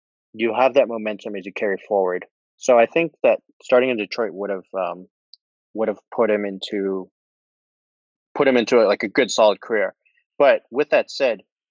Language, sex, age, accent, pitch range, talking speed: English, male, 20-39, American, 100-125 Hz, 185 wpm